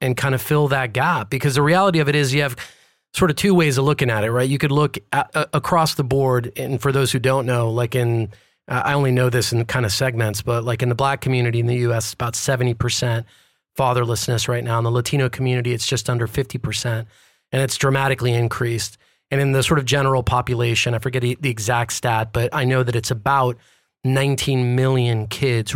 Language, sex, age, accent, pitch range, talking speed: English, male, 30-49, American, 115-140 Hz, 220 wpm